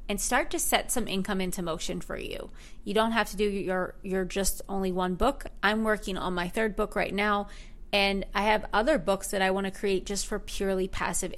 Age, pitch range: 20-39, 190-220 Hz